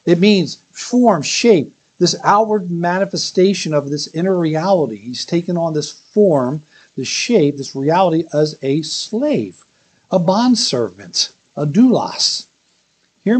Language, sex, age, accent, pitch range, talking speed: English, male, 60-79, American, 150-195 Hz, 125 wpm